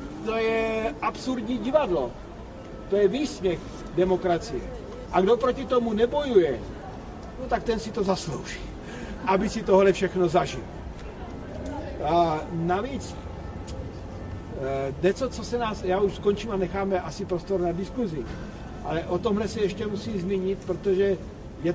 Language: Slovak